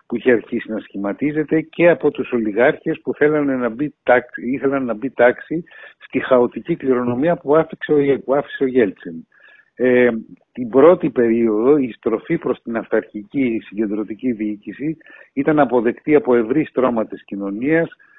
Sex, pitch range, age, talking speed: male, 115-150 Hz, 60-79, 145 wpm